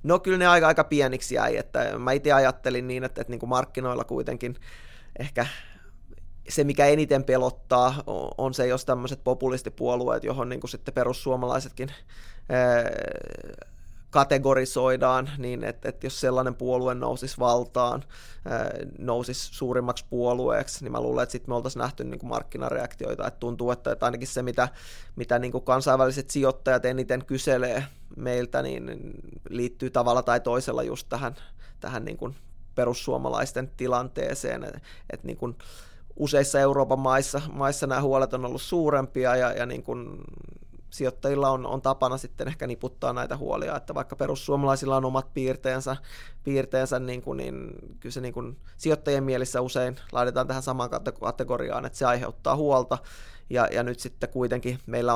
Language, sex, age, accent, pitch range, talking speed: Finnish, male, 20-39, native, 120-130 Hz, 150 wpm